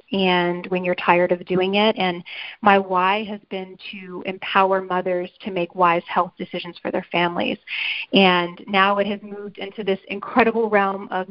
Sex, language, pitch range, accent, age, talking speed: female, English, 190-230 Hz, American, 30-49, 175 wpm